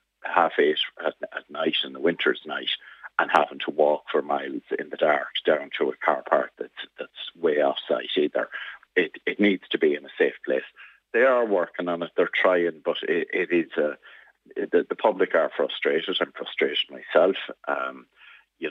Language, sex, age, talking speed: English, male, 50-69, 190 wpm